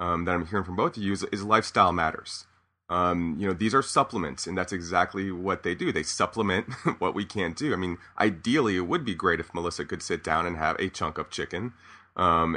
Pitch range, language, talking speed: 90-105 Hz, English, 235 wpm